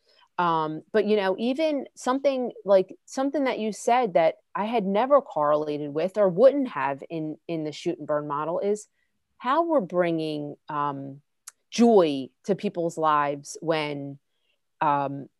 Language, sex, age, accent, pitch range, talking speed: English, female, 30-49, American, 160-225 Hz, 150 wpm